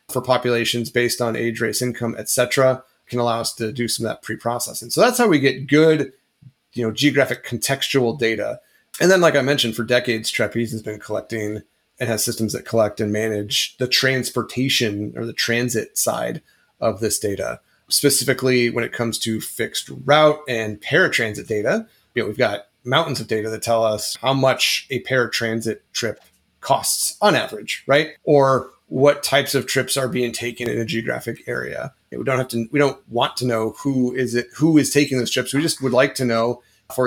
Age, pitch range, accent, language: 30-49, 115-135 Hz, American, English